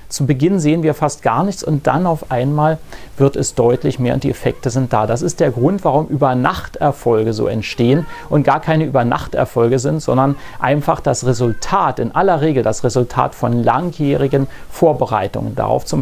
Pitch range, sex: 125-175 Hz, male